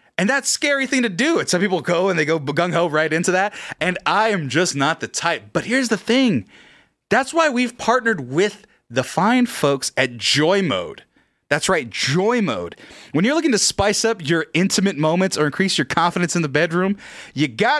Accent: American